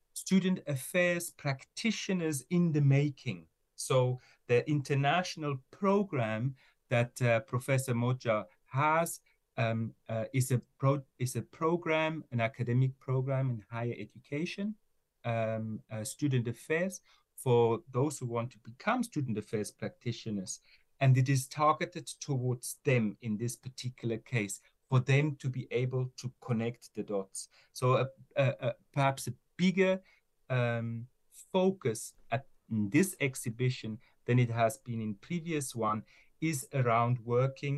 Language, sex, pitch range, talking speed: English, male, 120-145 Hz, 130 wpm